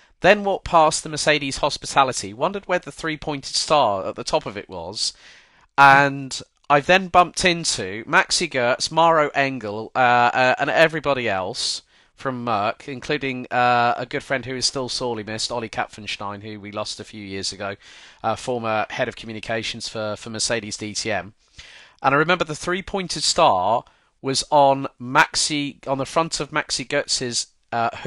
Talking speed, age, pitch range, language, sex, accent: 165 wpm, 40-59, 120-155 Hz, English, male, British